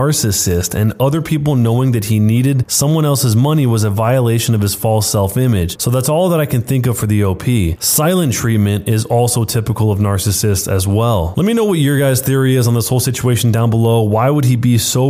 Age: 20-39